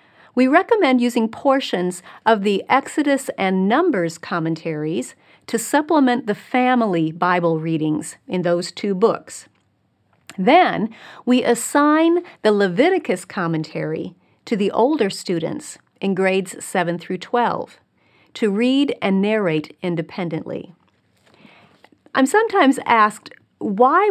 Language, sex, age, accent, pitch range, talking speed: English, female, 40-59, American, 180-245 Hz, 105 wpm